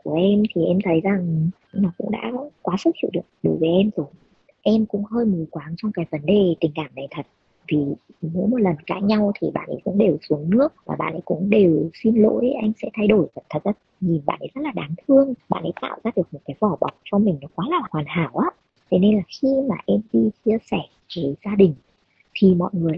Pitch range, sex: 165-215 Hz, male